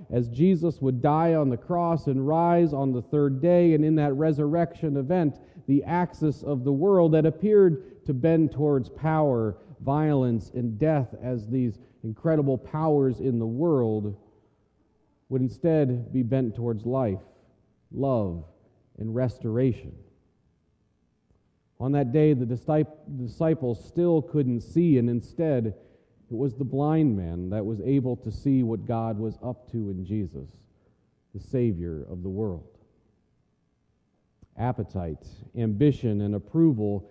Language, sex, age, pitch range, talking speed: English, male, 40-59, 115-165 Hz, 135 wpm